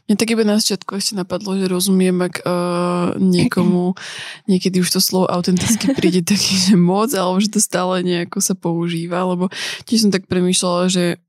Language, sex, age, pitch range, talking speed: Slovak, female, 20-39, 175-195 Hz, 175 wpm